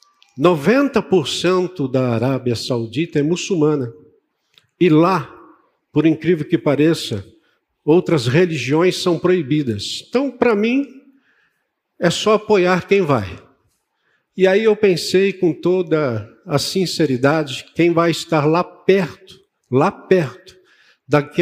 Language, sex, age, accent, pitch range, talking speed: Portuguese, male, 60-79, Brazilian, 145-195 Hz, 110 wpm